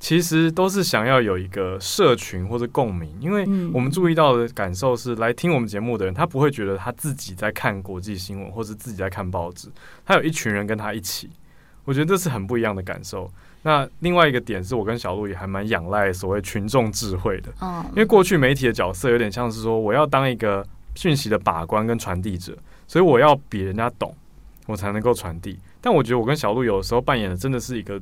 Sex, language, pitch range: male, Chinese, 95-135 Hz